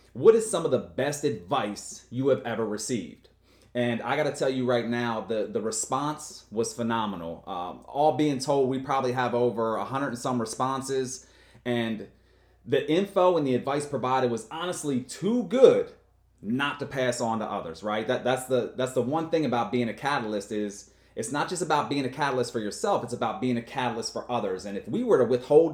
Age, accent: 30-49, American